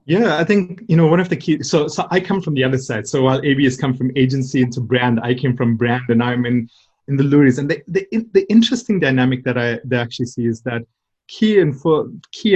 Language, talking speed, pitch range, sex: English, 260 wpm, 125-150 Hz, male